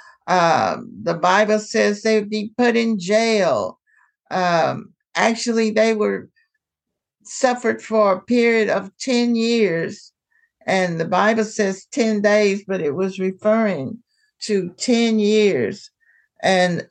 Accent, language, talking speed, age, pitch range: American, English, 120 wpm, 60-79, 190-220 Hz